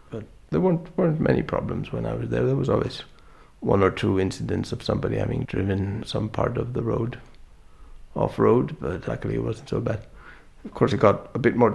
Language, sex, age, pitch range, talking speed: English, male, 60-79, 80-115 Hz, 205 wpm